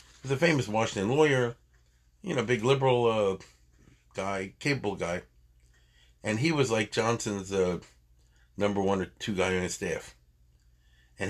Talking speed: 155 wpm